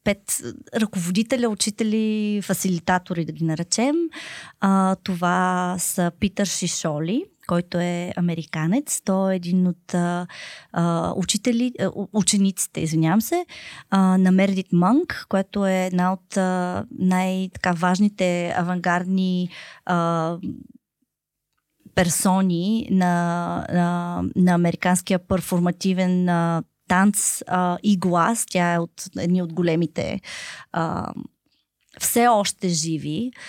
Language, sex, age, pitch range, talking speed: Bulgarian, female, 20-39, 180-225 Hz, 95 wpm